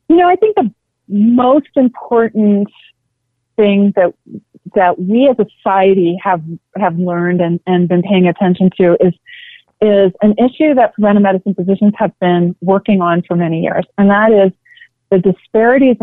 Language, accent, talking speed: English, American, 160 wpm